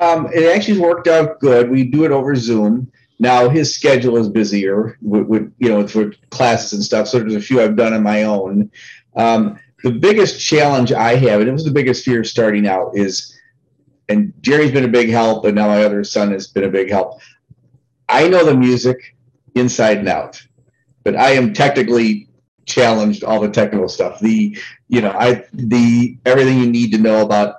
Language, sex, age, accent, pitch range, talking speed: English, male, 40-59, American, 105-130 Hz, 200 wpm